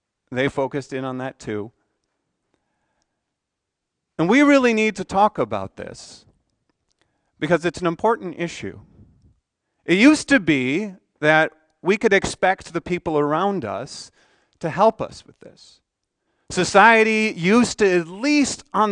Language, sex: English, male